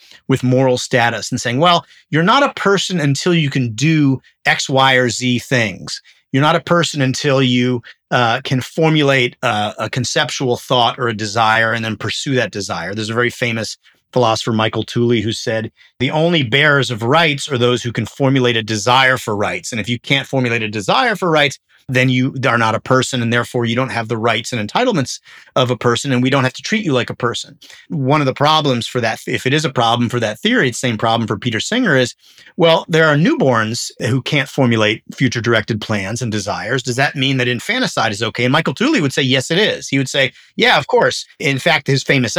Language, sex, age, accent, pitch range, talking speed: English, male, 30-49, American, 115-145 Hz, 225 wpm